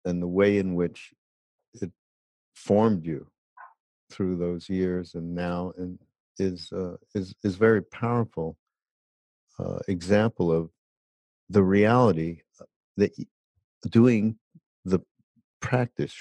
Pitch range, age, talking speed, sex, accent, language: 90-110 Hz, 50-69, 105 wpm, male, American, English